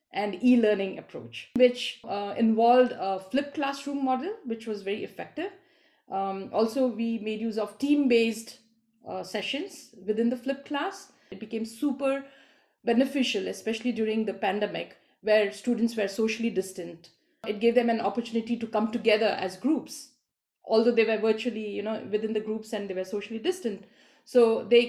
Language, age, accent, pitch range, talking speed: English, 50-69, Indian, 210-250 Hz, 160 wpm